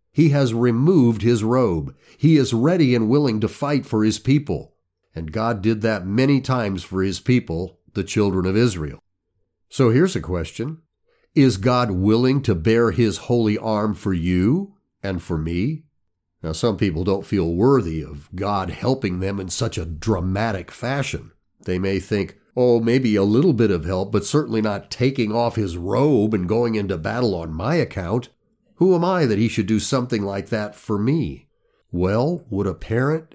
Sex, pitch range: male, 95-130 Hz